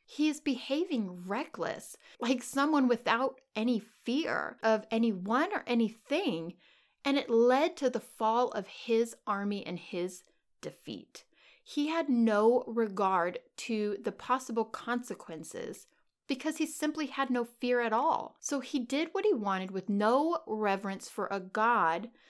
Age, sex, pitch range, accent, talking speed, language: 30-49, female, 210-275 Hz, American, 145 wpm, English